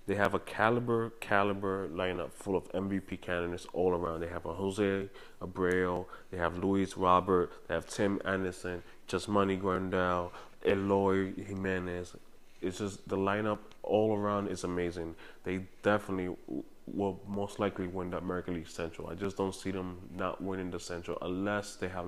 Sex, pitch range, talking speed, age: male, 90-105 Hz, 165 wpm, 20-39